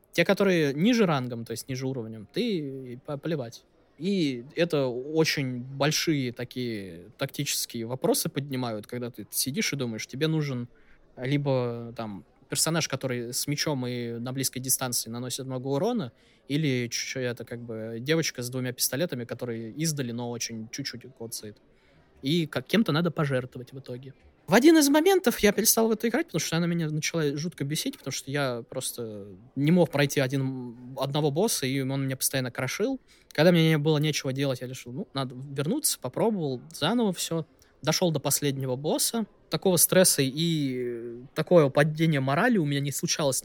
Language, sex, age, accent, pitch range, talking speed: Russian, male, 20-39, native, 125-160 Hz, 160 wpm